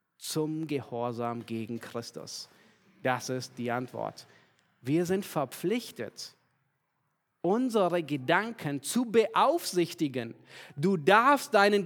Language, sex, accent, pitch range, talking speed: German, male, German, 135-215 Hz, 90 wpm